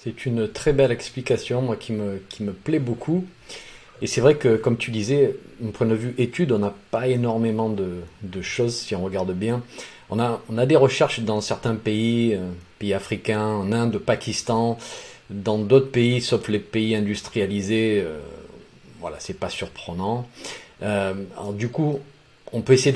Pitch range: 105-125 Hz